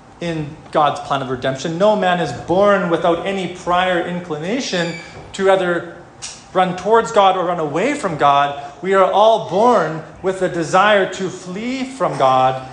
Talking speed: 160 wpm